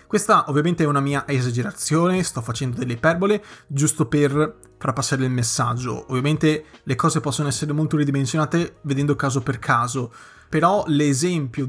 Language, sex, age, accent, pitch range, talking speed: Italian, male, 30-49, native, 135-165 Hz, 150 wpm